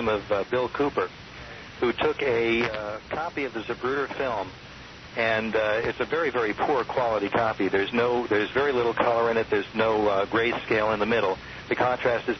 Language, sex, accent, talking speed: English, male, American, 200 wpm